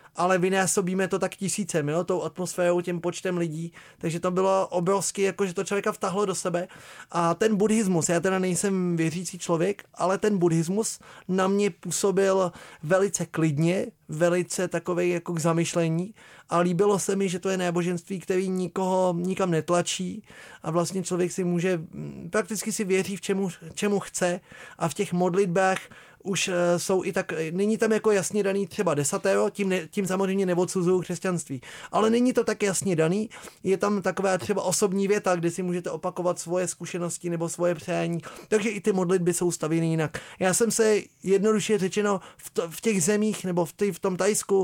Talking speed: 175 wpm